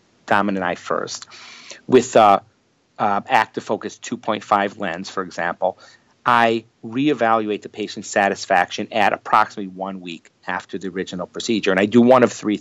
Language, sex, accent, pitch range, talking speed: English, male, American, 95-120 Hz, 150 wpm